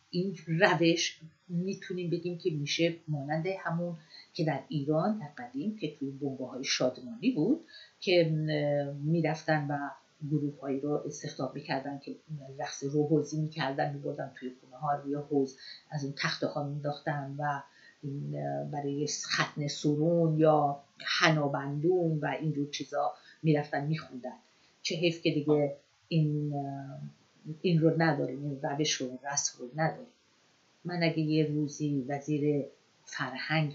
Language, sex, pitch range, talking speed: Persian, female, 145-170 Hz, 125 wpm